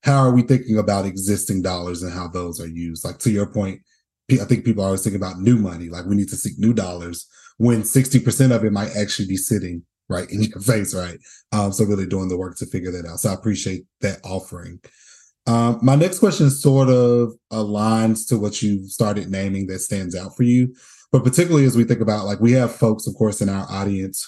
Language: English